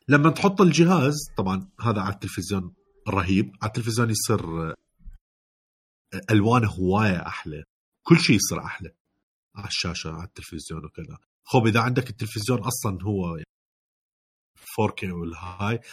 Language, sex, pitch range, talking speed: Arabic, male, 95-140 Hz, 120 wpm